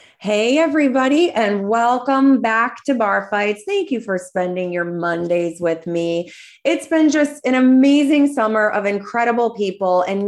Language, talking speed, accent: English, 150 wpm, American